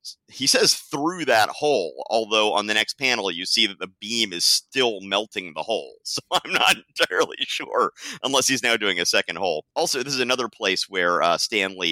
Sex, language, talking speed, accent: male, English, 205 wpm, American